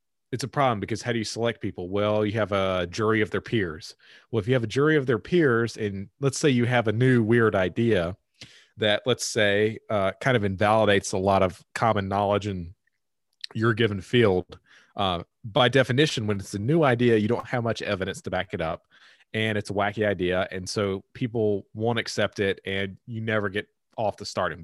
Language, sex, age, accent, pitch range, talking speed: English, male, 30-49, American, 100-125 Hz, 210 wpm